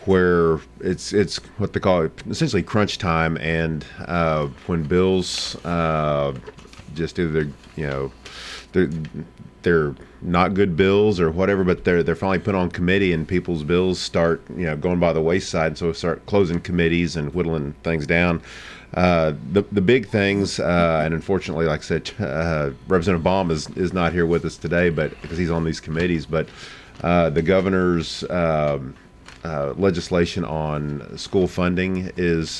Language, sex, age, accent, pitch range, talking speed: English, male, 40-59, American, 75-85 Hz, 165 wpm